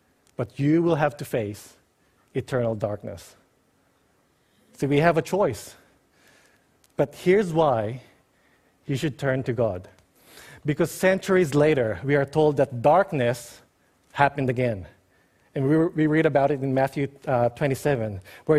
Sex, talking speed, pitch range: male, 130 wpm, 130-175 Hz